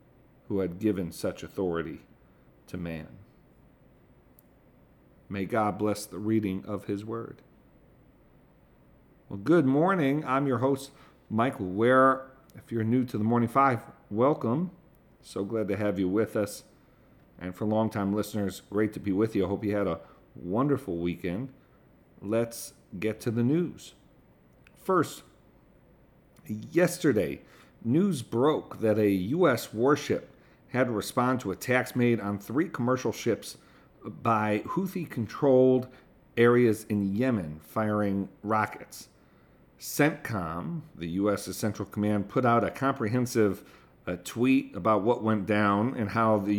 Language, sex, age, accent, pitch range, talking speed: English, male, 50-69, American, 100-125 Hz, 130 wpm